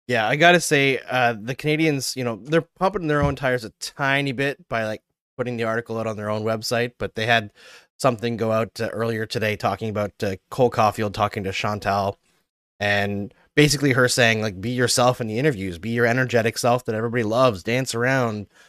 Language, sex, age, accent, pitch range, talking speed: English, male, 20-39, American, 110-140 Hz, 200 wpm